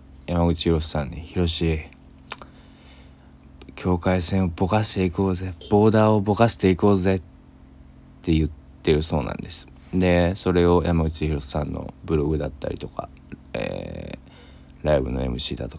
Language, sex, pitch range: Japanese, male, 70-90 Hz